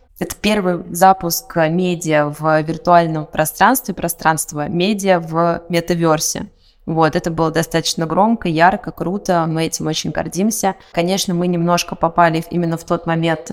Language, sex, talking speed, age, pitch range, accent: Russian, female, 135 wpm, 20-39, 160-185 Hz, native